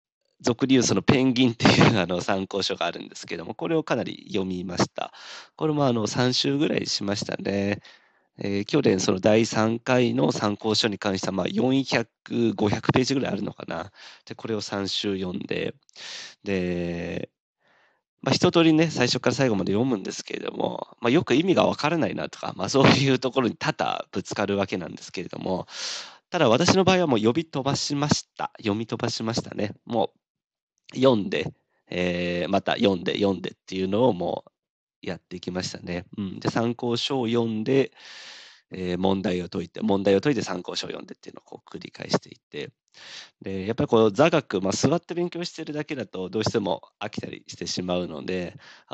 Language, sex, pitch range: Japanese, male, 95-135 Hz